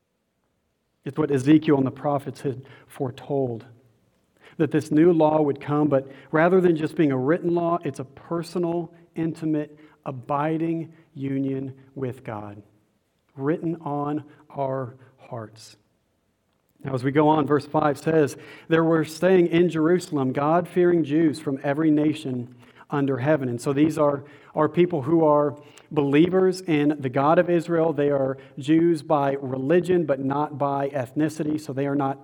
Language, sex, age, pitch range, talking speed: English, male, 40-59, 140-165 Hz, 150 wpm